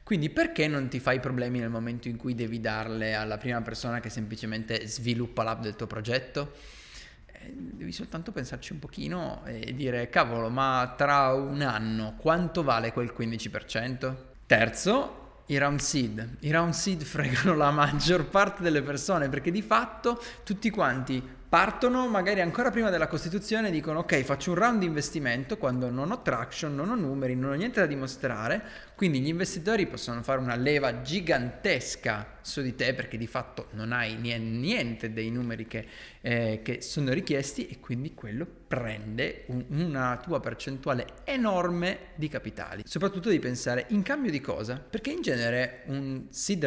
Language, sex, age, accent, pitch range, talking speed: Italian, male, 20-39, native, 120-160 Hz, 165 wpm